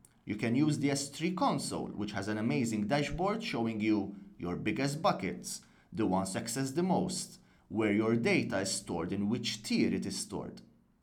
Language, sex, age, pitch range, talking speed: English, male, 30-49, 115-180 Hz, 175 wpm